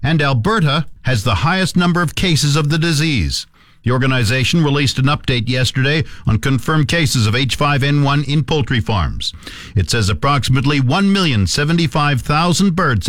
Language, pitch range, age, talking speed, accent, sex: English, 125-160 Hz, 50-69, 140 wpm, American, male